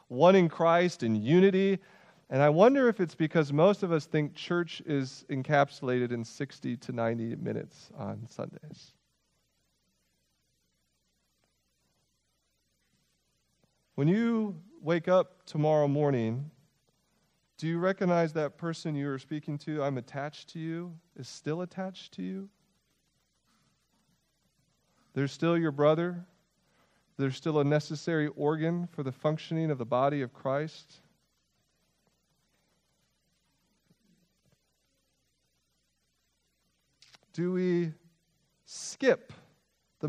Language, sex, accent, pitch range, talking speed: English, male, American, 130-175 Hz, 105 wpm